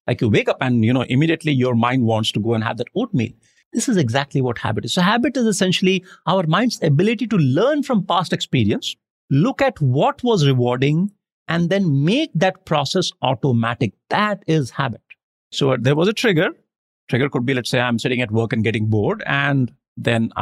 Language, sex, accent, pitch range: English, male, Indian, 125-190 Hz